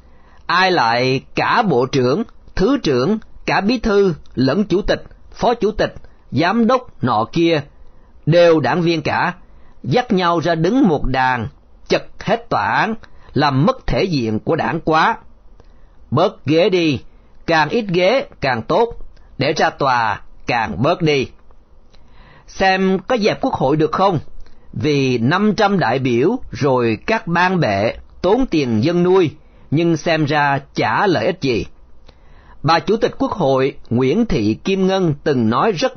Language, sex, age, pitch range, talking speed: Vietnamese, male, 40-59, 130-190 Hz, 155 wpm